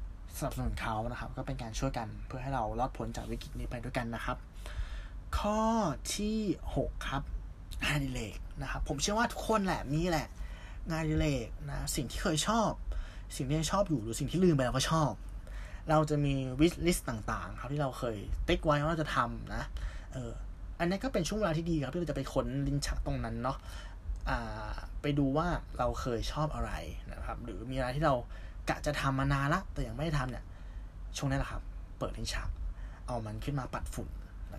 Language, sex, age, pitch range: Thai, male, 20-39, 90-145 Hz